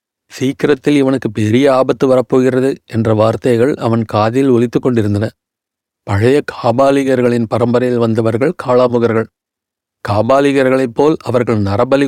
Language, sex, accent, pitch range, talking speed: Tamil, male, native, 120-135 Hz, 100 wpm